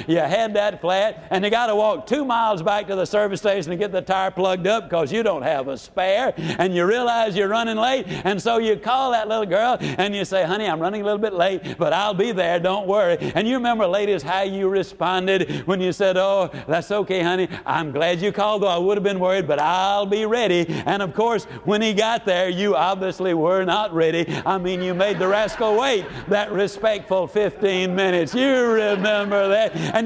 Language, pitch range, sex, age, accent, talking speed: English, 190-225 Hz, male, 60-79, American, 225 wpm